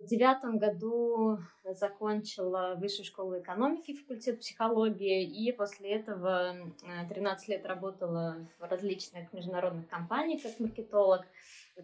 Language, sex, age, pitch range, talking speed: Russian, female, 20-39, 175-215 Hz, 110 wpm